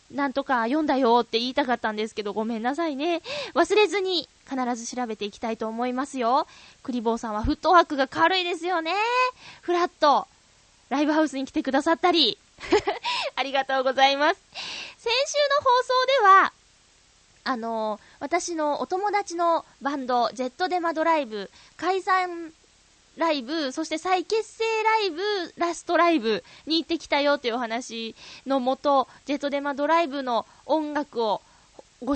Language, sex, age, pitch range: Japanese, female, 20-39, 250-360 Hz